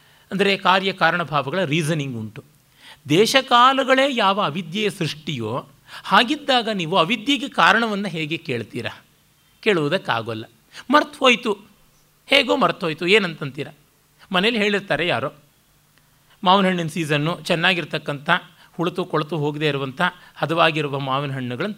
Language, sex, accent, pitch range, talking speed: Kannada, male, native, 145-210 Hz, 95 wpm